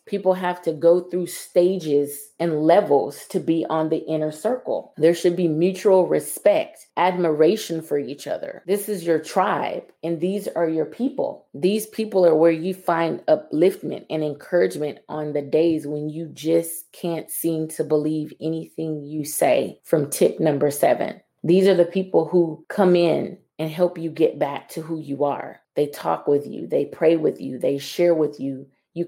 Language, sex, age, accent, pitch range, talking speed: English, female, 30-49, American, 155-180 Hz, 180 wpm